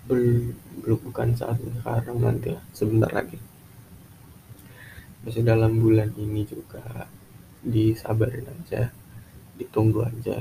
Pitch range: 110-125 Hz